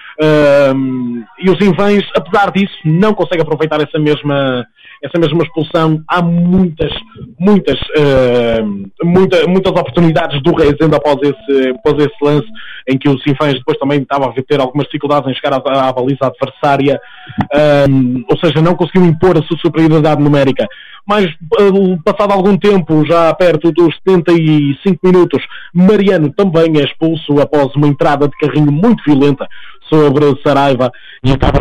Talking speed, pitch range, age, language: 135 wpm, 140-175 Hz, 20-39, Portuguese